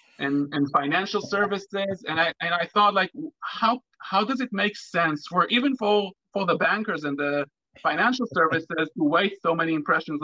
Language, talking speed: English, 180 wpm